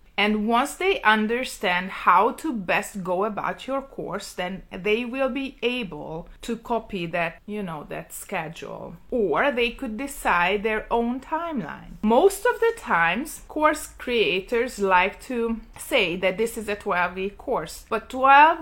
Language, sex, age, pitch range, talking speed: English, female, 30-49, 195-255 Hz, 155 wpm